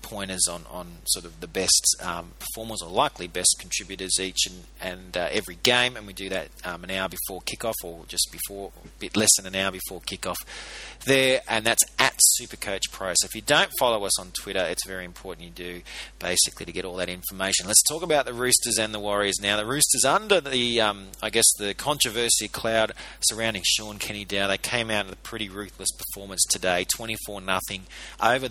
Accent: Australian